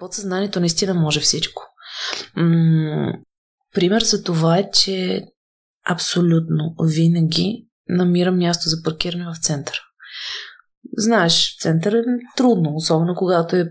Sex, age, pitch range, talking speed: female, 20-39, 175-230 Hz, 110 wpm